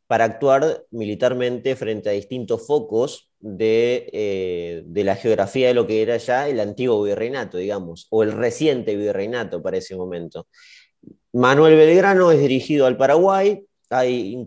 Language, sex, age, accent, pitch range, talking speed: Spanish, male, 30-49, Argentinian, 110-150 Hz, 150 wpm